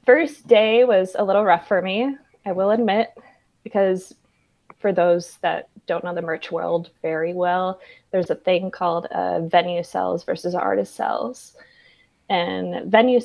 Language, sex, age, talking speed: English, female, 20-39, 155 wpm